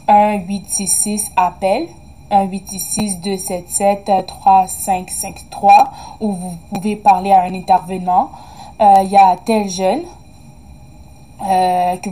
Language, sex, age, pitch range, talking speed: French, female, 20-39, 190-215 Hz, 155 wpm